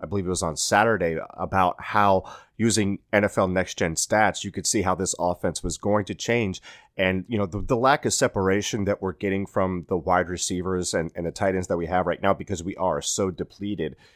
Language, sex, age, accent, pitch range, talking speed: English, male, 30-49, American, 90-105 Hz, 220 wpm